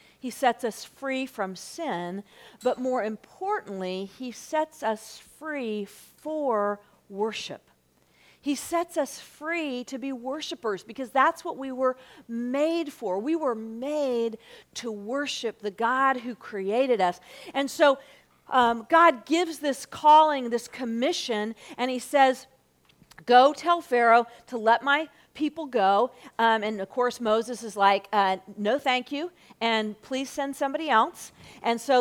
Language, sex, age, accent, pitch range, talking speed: English, female, 40-59, American, 225-290 Hz, 145 wpm